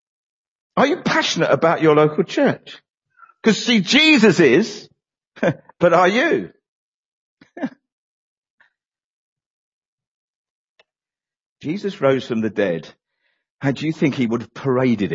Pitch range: 135-220 Hz